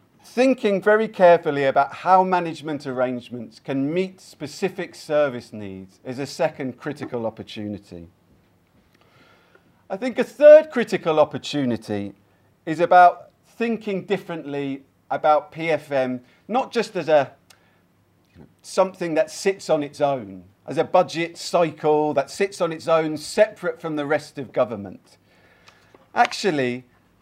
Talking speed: 120 wpm